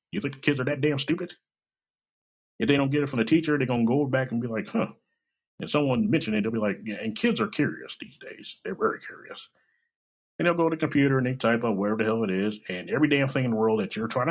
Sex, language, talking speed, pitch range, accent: male, English, 280 wpm, 110-165 Hz, American